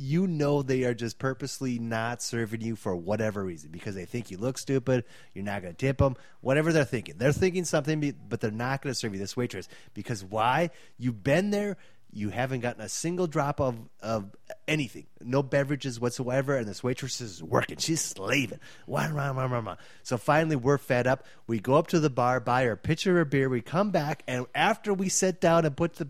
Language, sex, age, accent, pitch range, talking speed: English, male, 30-49, American, 120-170 Hz, 210 wpm